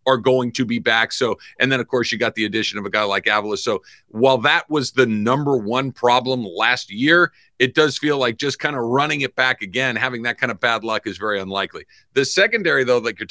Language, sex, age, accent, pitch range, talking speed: English, male, 50-69, American, 120-145 Hz, 245 wpm